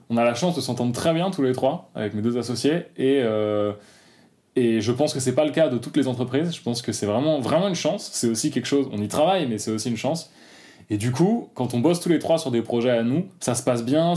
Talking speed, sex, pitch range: 290 wpm, male, 125-155 Hz